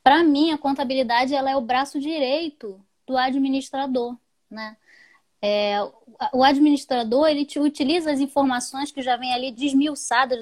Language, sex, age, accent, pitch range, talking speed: Portuguese, female, 10-29, Brazilian, 220-285 Hz, 130 wpm